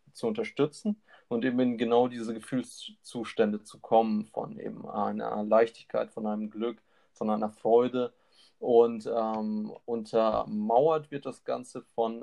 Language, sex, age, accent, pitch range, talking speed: German, male, 30-49, German, 110-125 Hz, 130 wpm